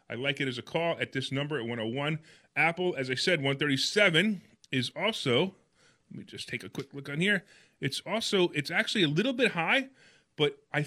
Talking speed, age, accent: 205 wpm, 30-49, American